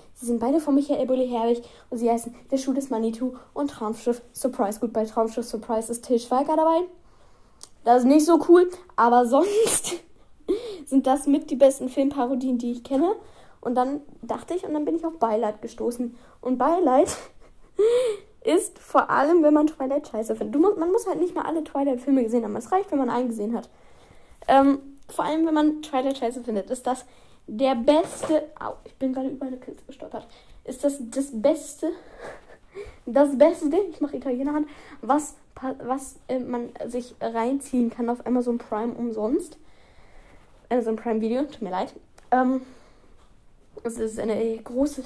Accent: German